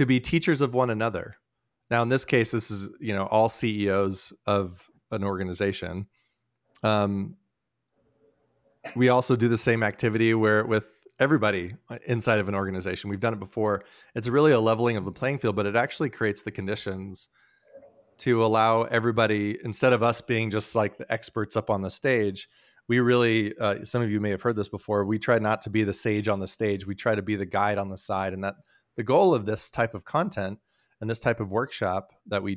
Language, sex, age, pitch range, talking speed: English, male, 30-49, 100-120 Hz, 205 wpm